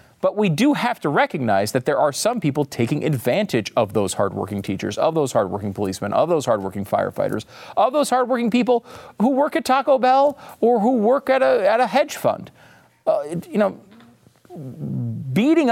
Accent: American